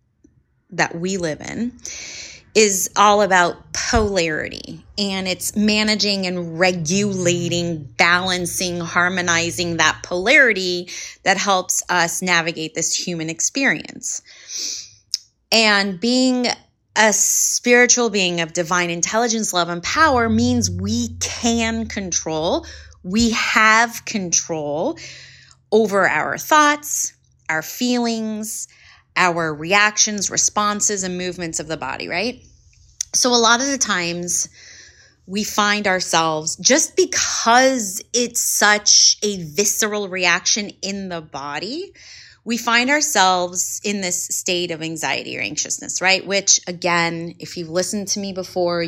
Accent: American